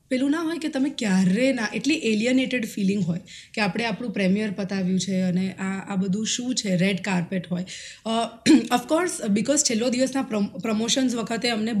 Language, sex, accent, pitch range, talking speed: Gujarati, female, native, 190-260 Hz, 175 wpm